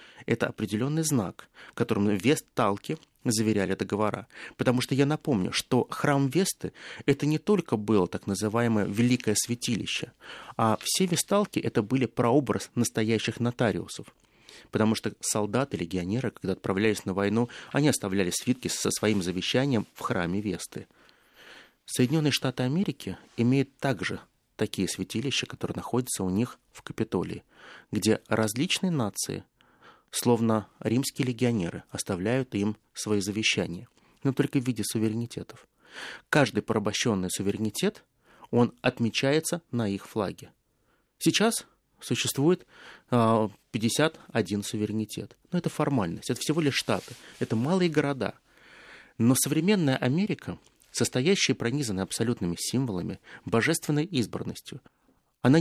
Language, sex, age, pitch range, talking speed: Russian, male, 30-49, 105-140 Hz, 115 wpm